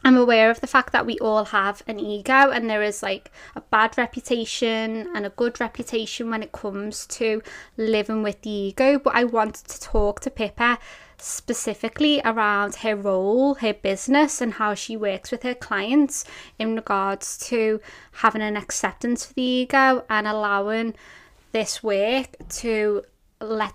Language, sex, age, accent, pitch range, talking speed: English, female, 20-39, British, 215-250 Hz, 165 wpm